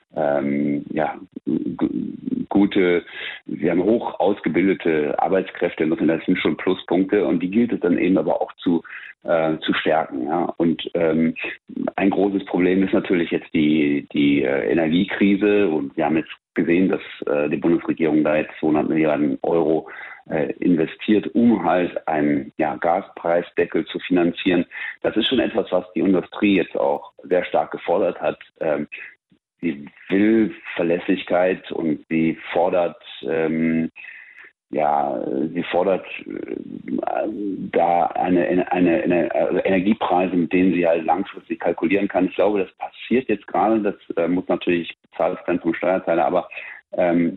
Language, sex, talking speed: German, male, 145 wpm